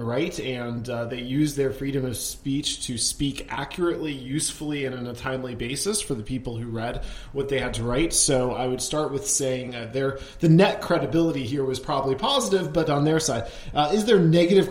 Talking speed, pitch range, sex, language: 205 wpm, 130-155 Hz, male, English